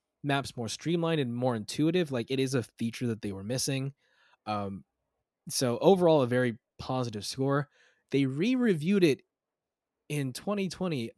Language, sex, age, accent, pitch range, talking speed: English, male, 20-39, American, 120-155 Hz, 145 wpm